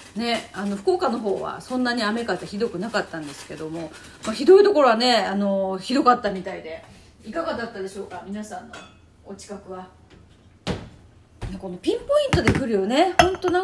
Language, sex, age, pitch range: Japanese, female, 30-49, 185-270 Hz